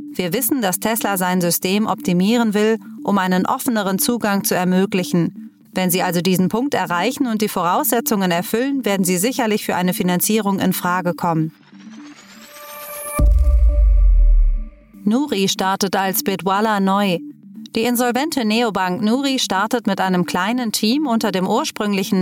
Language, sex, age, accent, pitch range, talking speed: German, female, 30-49, German, 180-230 Hz, 135 wpm